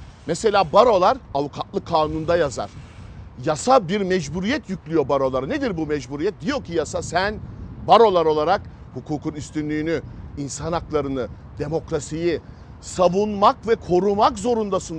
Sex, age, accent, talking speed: male, 50-69, native, 110 wpm